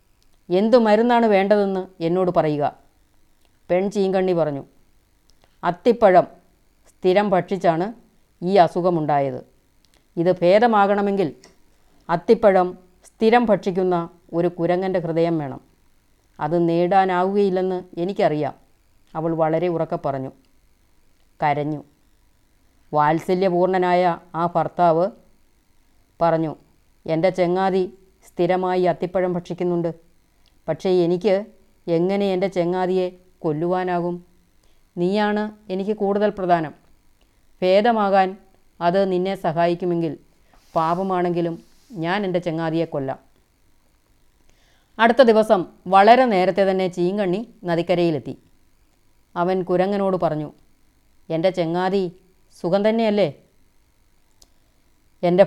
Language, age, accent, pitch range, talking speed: Malayalam, 30-49, native, 160-195 Hz, 75 wpm